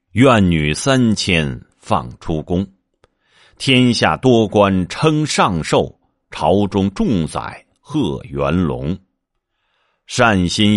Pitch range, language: 80-115 Hz, Chinese